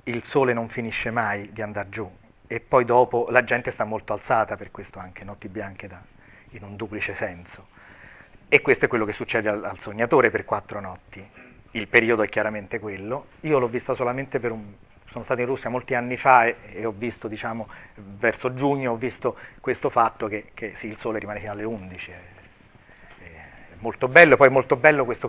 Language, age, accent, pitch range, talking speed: Italian, 40-59, native, 100-125 Hz, 205 wpm